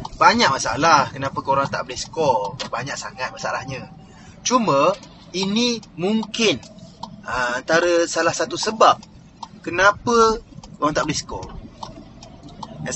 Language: Malay